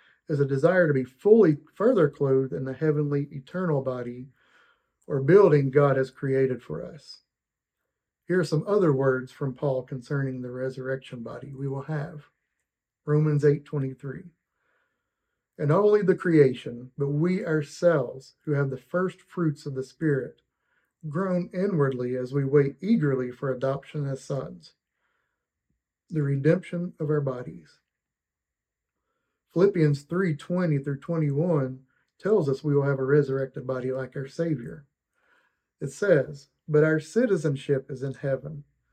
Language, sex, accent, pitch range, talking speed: English, male, American, 135-160 Hz, 140 wpm